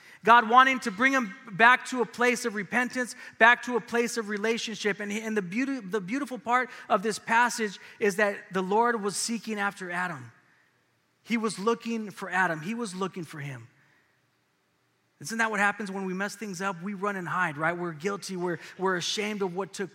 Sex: male